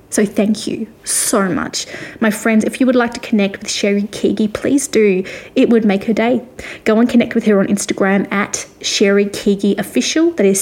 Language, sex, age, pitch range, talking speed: English, female, 20-39, 200-240 Hz, 205 wpm